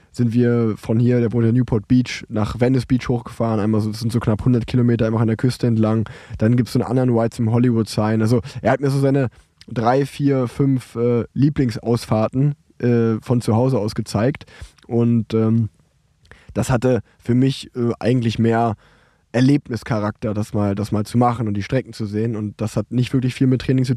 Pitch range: 115-130 Hz